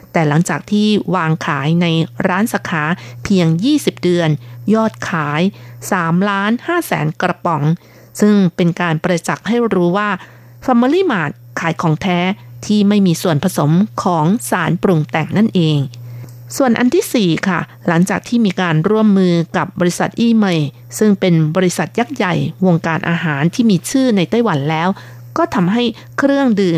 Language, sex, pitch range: Thai, female, 160-210 Hz